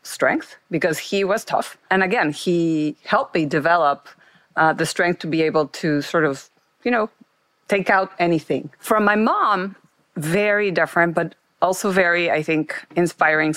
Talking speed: 160 wpm